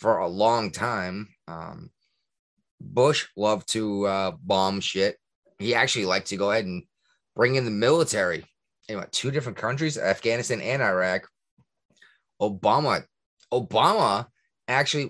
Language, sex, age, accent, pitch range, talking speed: English, male, 30-49, American, 100-140 Hz, 125 wpm